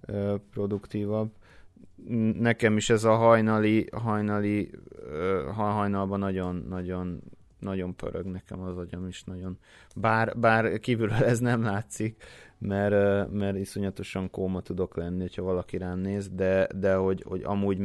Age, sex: 30-49, male